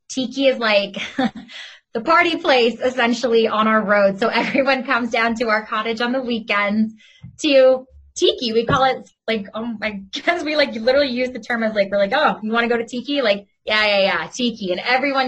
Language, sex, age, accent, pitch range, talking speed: English, female, 20-39, American, 195-245 Hz, 210 wpm